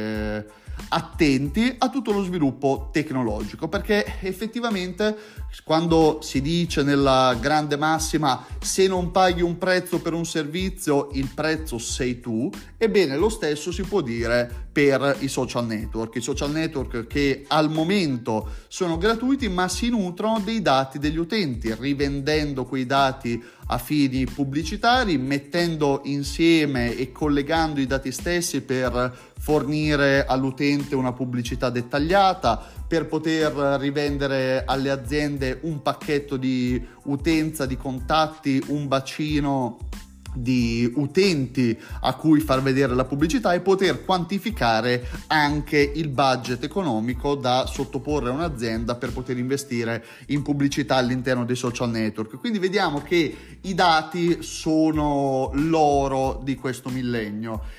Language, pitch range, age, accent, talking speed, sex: Italian, 130-160 Hz, 30-49, native, 125 wpm, male